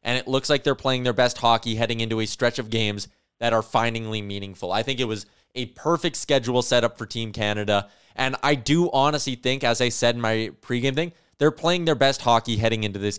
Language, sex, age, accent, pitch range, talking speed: English, male, 20-39, American, 110-145 Hz, 230 wpm